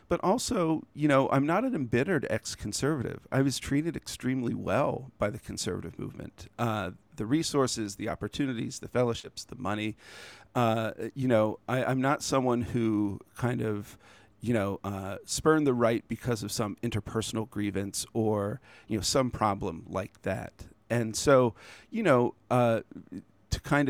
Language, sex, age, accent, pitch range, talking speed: English, male, 40-59, American, 105-125 Hz, 155 wpm